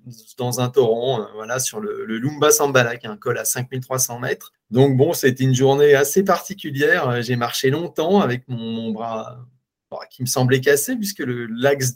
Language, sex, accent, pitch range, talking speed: French, male, French, 120-145 Hz, 195 wpm